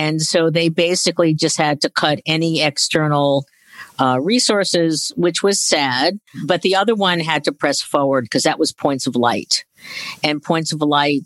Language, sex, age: English, female, 50-69